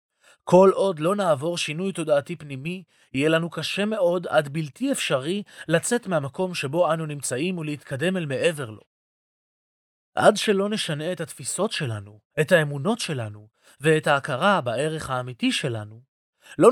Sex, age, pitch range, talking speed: male, 30-49, 135-185 Hz, 135 wpm